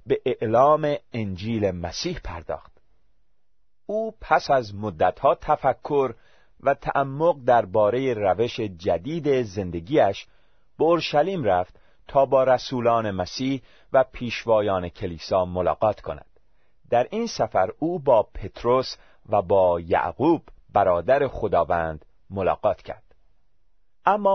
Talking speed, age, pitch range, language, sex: 100 wpm, 40-59, 95-145 Hz, Persian, male